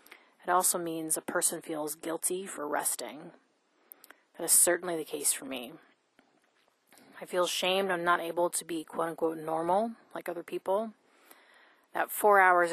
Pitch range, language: 165-190 Hz, English